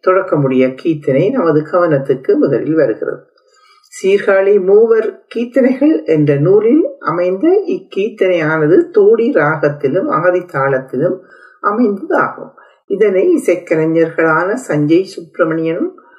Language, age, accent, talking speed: Tamil, 50-69, native, 80 wpm